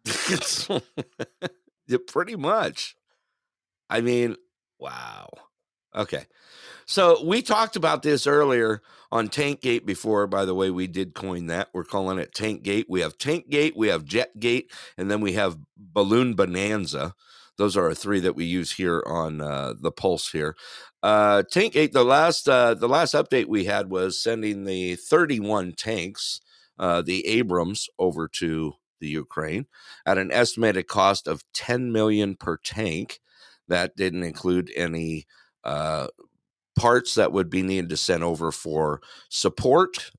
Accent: American